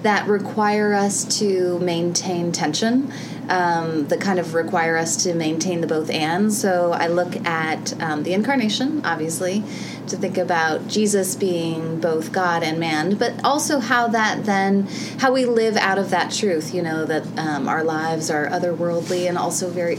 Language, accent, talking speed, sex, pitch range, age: English, American, 170 wpm, female, 170-230 Hz, 30-49